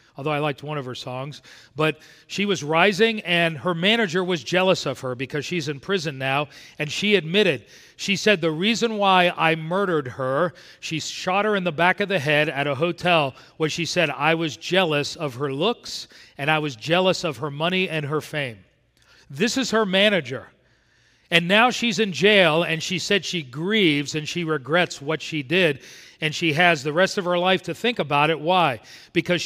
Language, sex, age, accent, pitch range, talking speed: English, male, 40-59, American, 150-185 Hz, 200 wpm